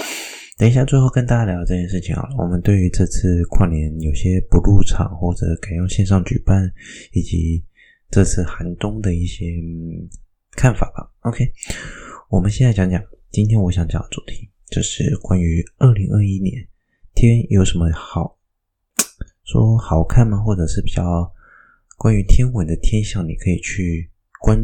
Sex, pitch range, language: male, 85-105 Hz, Chinese